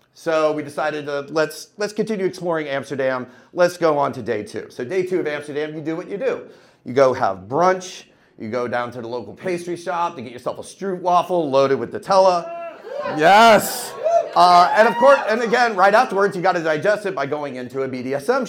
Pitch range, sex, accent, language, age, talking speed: 135-195 Hz, male, American, English, 40-59, 210 wpm